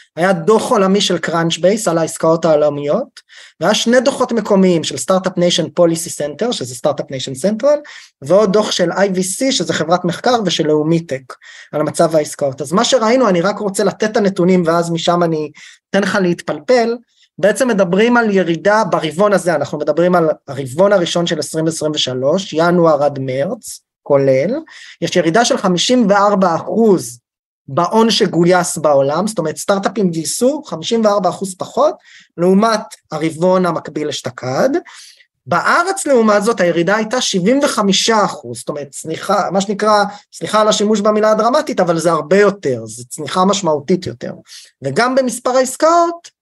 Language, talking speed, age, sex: Hebrew, 145 wpm, 20-39, male